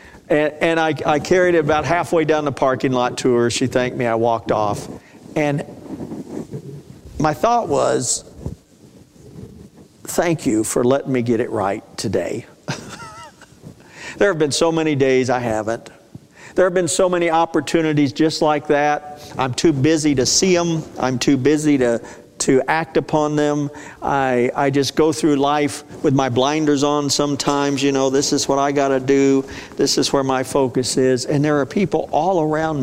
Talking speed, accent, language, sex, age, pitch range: 170 wpm, American, English, male, 50-69, 130-160 Hz